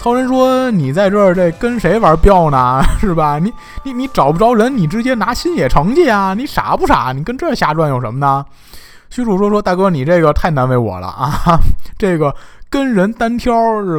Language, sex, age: Chinese, male, 20-39